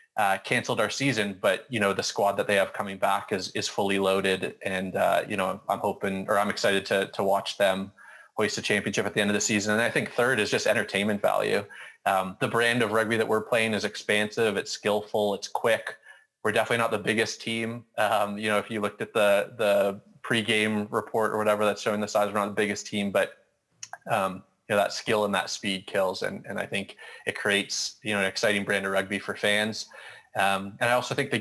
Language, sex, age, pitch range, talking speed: English, male, 20-39, 100-110 Hz, 230 wpm